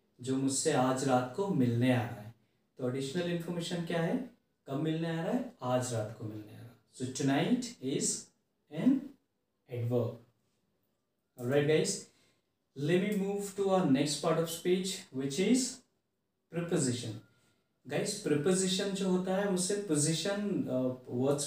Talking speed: 100 wpm